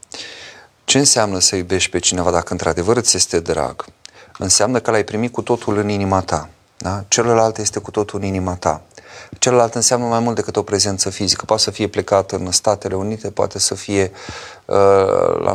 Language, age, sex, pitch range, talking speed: Romanian, 30-49, male, 95-110 Hz, 180 wpm